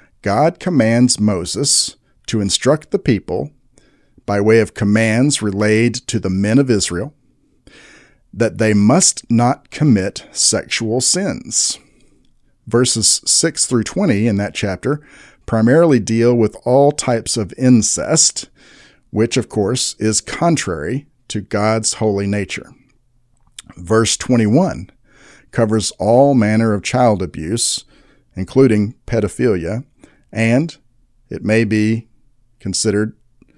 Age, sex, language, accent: 50-69, male, English, American